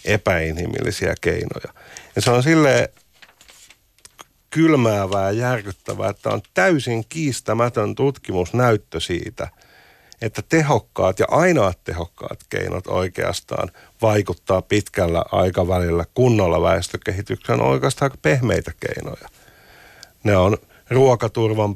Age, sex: 50-69, male